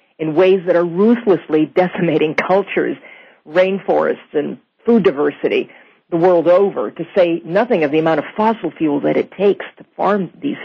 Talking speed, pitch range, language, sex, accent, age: 165 wpm, 160-205 Hz, English, female, American, 40-59